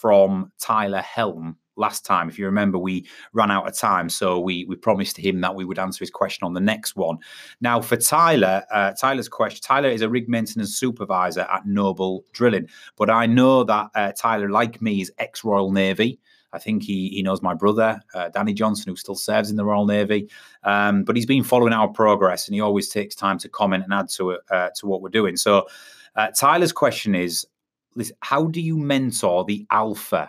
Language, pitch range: English, 95-110 Hz